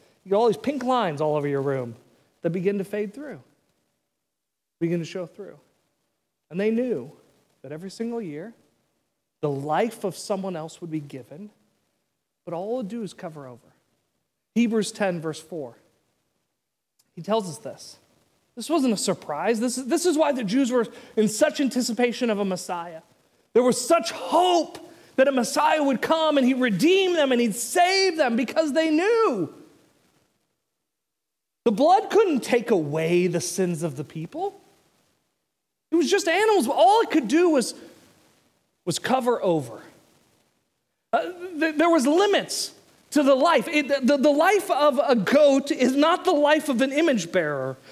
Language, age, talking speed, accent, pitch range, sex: English, 40-59, 165 wpm, American, 180-295 Hz, male